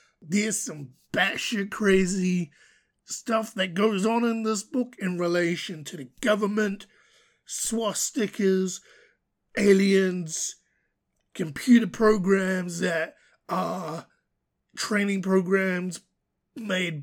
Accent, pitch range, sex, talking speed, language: American, 170-205 Hz, male, 90 wpm, English